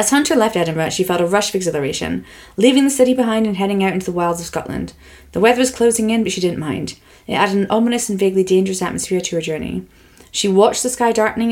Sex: female